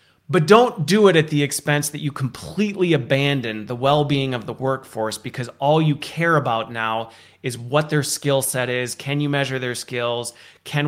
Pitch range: 125-165 Hz